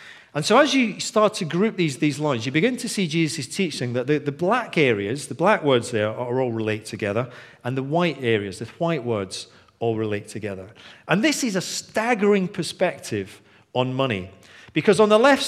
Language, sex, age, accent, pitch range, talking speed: English, male, 40-59, British, 115-180 Hz, 205 wpm